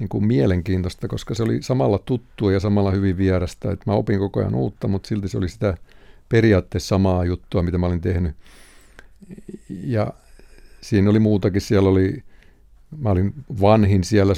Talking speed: 165 wpm